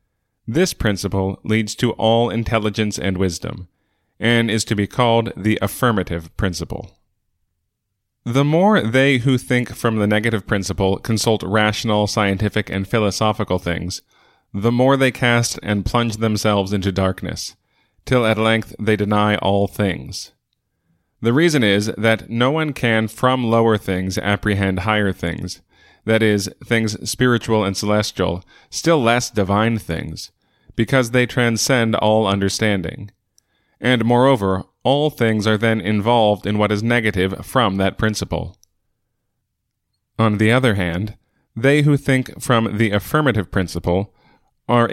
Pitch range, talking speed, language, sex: 100-120 Hz, 135 wpm, English, male